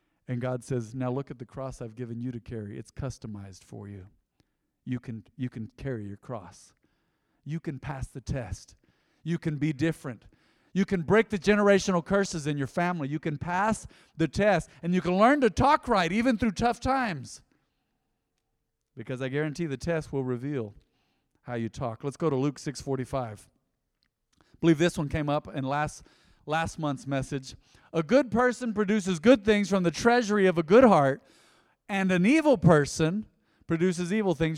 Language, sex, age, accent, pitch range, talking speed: English, male, 40-59, American, 135-190 Hz, 180 wpm